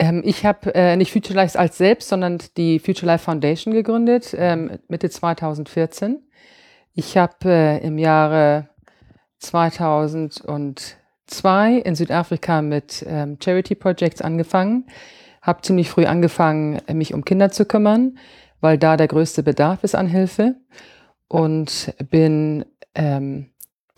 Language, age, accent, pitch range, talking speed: German, 40-59, German, 150-180 Hz, 125 wpm